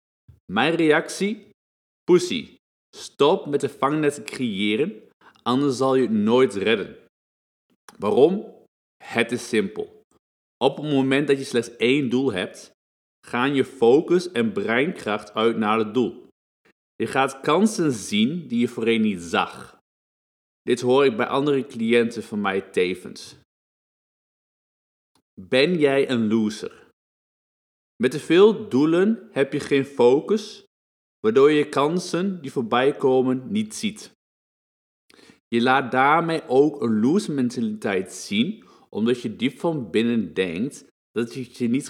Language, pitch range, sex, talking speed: Dutch, 115-175 Hz, male, 135 wpm